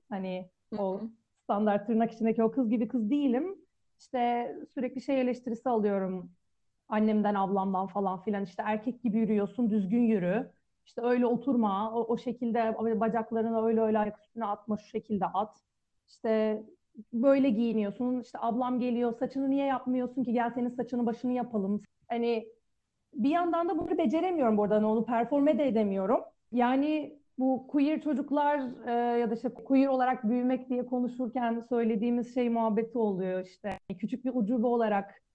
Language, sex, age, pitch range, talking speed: Turkish, female, 40-59, 215-255 Hz, 150 wpm